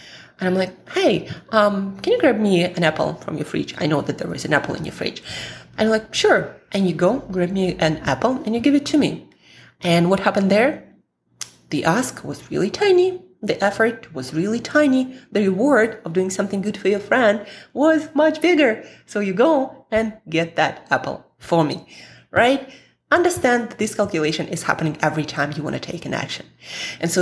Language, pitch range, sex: English, 150-215 Hz, female